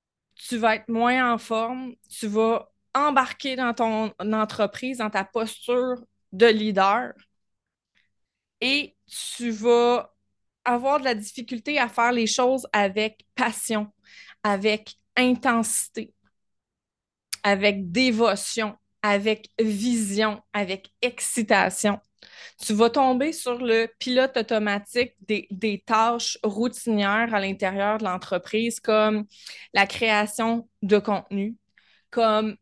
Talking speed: 110 wpm